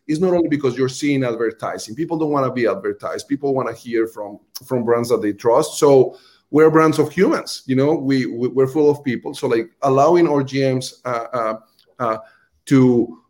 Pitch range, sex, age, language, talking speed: 125-155 Hz, male, 30-49, English, 195 wpm